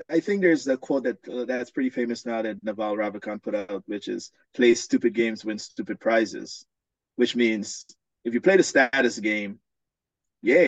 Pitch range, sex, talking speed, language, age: 105-130 Hz, male, 185 wpm, English, 30-49